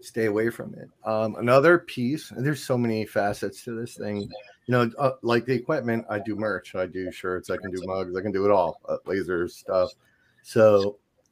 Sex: male